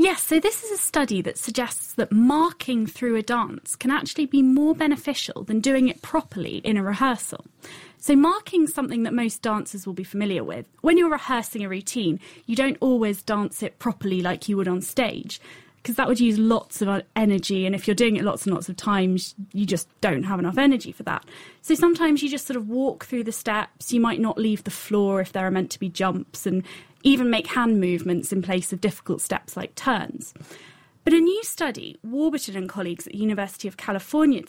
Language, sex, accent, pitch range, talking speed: English, female, British, 195-275 Hz, 215 wpm